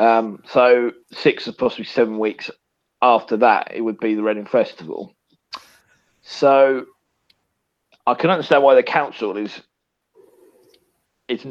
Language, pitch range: English, 110-125 Hz